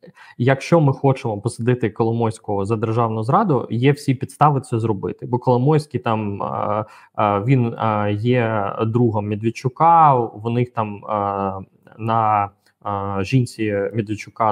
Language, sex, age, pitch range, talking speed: Ukrainian, male, 20-39, 105-130 Hz, 105 wpm